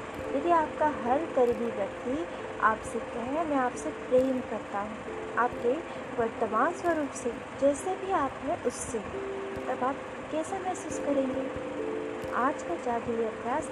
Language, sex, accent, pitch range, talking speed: Hindi, female, native, 240-280 Hz, 130 wpm